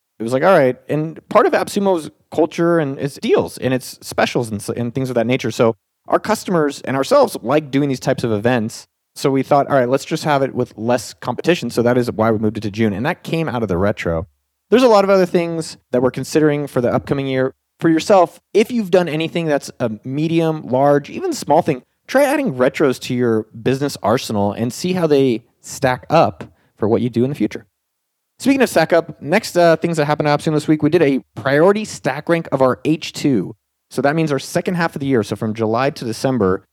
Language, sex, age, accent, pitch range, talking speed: English, male, 30-49, American, 115-155 Hz, 230 wpm